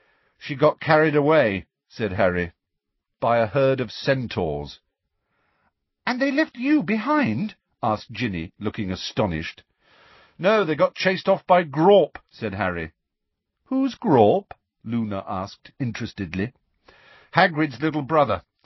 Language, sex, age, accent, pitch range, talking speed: English, male, 50-69, British, 95-155 Hz, 120 wpm